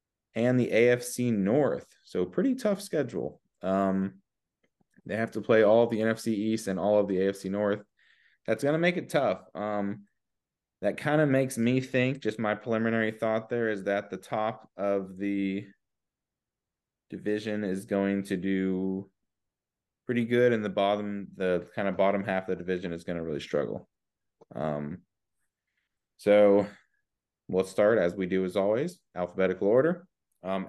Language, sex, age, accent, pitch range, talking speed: English, male, 20-39, American, 100-120 Hz, 160 wpm